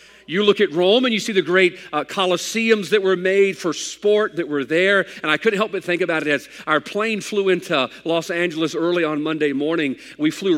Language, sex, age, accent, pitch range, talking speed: English, male, 50-69, American, 165-210 Hz, 225 wpm